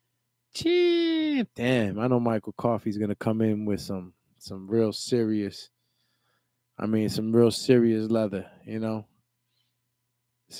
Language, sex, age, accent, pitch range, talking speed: English, male, 20-39, American, 110-125 Hz, 125 wpm